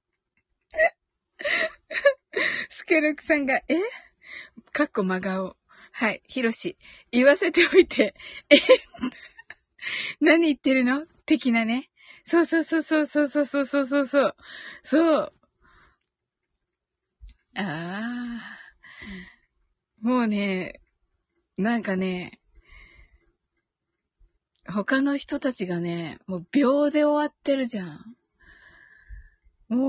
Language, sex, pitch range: Japanese, female, 210-315 Hz